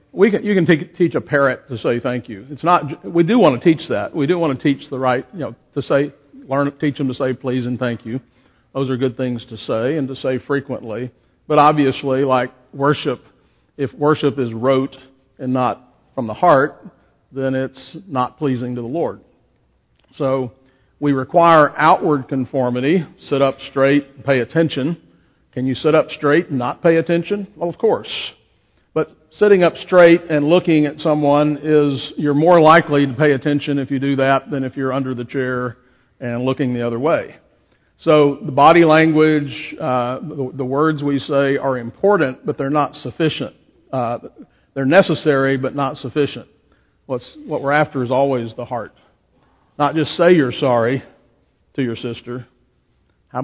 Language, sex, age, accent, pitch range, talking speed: English, male, 50-69, American, 130-150 Hz, 180 wpm